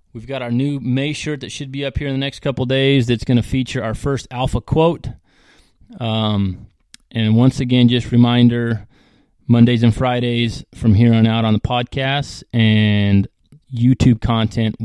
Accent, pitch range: American, 110-130 Hz